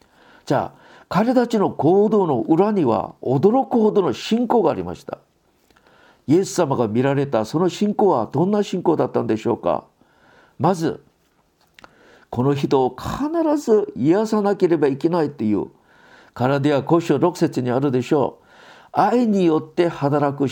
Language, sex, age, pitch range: Japanese, male, 50-69, 155-240 Hz